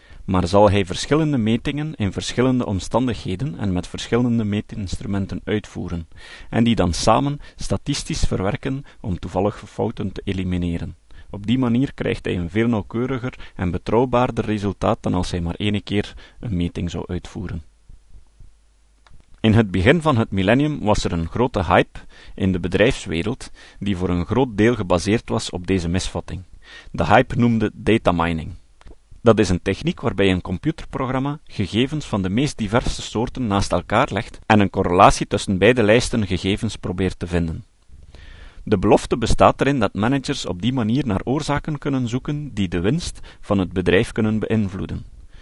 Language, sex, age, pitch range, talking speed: Dutch, male, 40-59, 90-120 Hz, 160 wpm